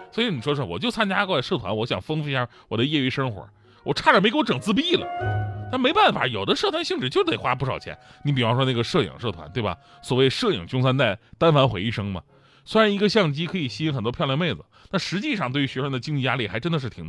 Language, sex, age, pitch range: Chinese, male, 30-49, 115-190 Hz